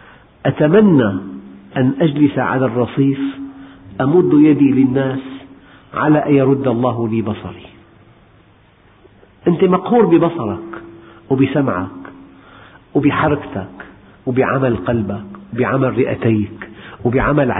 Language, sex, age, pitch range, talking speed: Arabic, male, 50-69, 105-145 Hz, 80 wpm